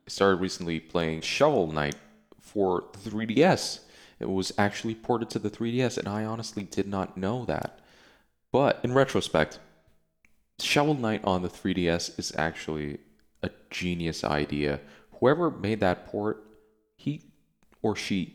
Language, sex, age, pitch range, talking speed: English, male, 20-39, 85-110 Hz, 135 wpm